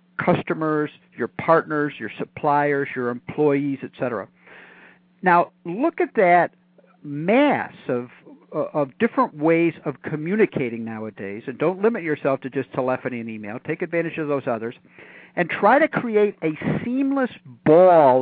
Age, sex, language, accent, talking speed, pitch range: 50-69, male, English, American, 135 wpm, 140-195 Hz